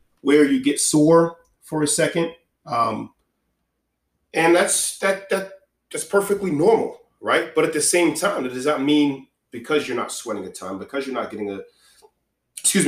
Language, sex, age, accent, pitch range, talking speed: English, male, 30-49, American, 105-165 Hz, 170 wpm